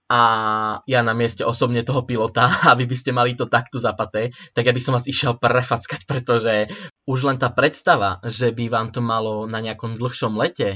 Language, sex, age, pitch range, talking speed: Slovak, male, 20-39, 115-135 Hz, 195 wpm